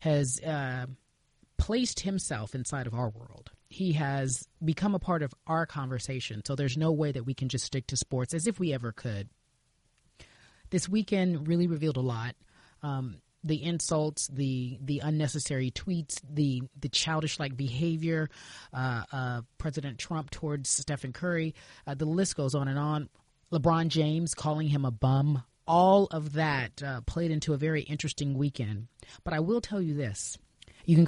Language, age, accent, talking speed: English, 30-49, American, 170 wpm